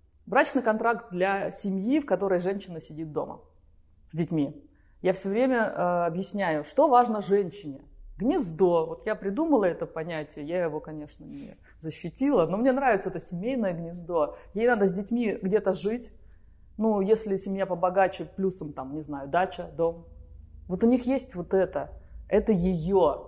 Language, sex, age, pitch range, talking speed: Russian, female, 30-49, 155-215 Hz, 155 wpm